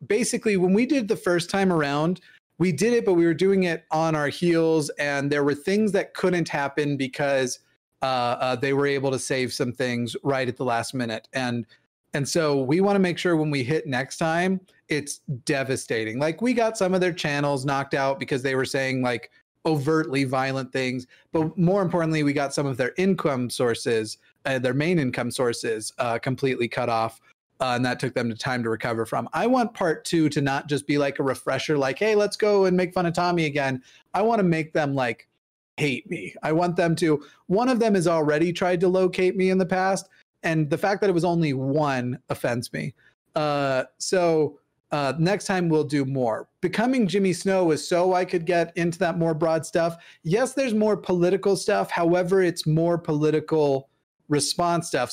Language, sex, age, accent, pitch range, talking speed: English, male, 30-49, American, 135-180 Hz, 205 wpm